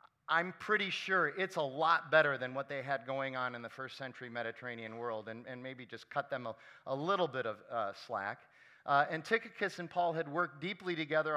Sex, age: male, 40-59